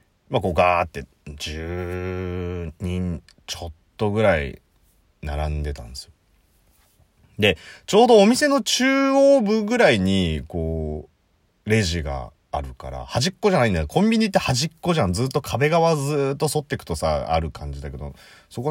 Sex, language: male, Japanese